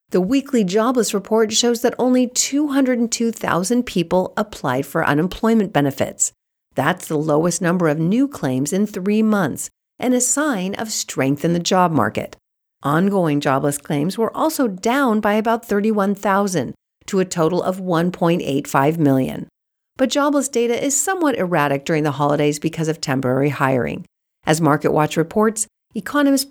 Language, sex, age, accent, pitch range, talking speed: English, female, 50-69, American, 155-235 Hz, 145 wpm